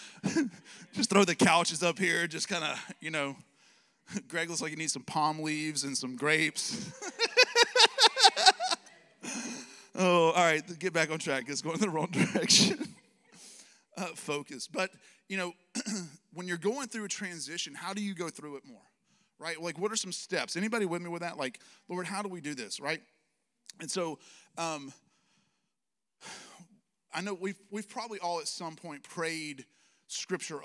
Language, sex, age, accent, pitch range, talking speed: English, male, 30-49, American, 150-200 Hz, 170 wpm